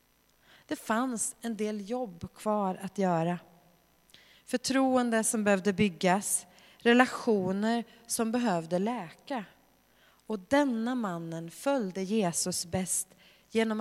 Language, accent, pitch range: Swedish, native, 175-240 Hz